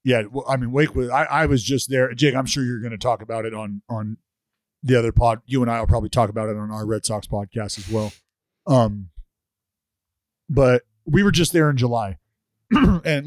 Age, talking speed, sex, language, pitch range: 40-59, 215 wpm, male, English, 110-150 Hz